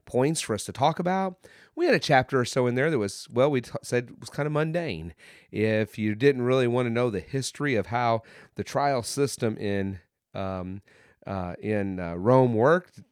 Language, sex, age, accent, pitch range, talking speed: English, male, 30-49, American, 100-135 Hz, 210 wpm